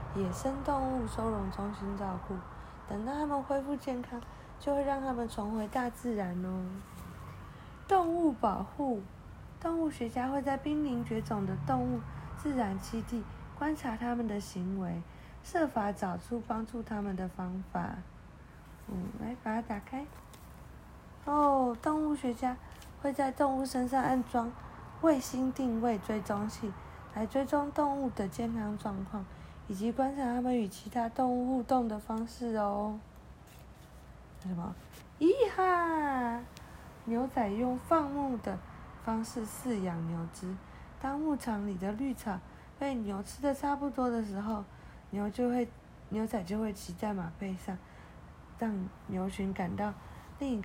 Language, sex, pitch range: Chinese, female, 200-270 Hz